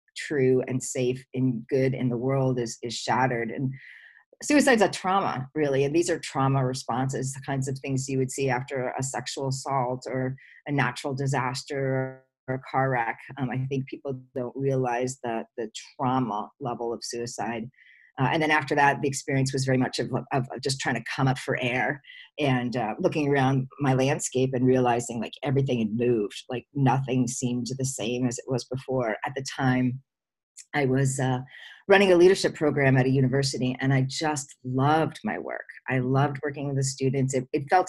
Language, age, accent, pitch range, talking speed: English, 40-59, American, 130-140 Hz, 190 wpm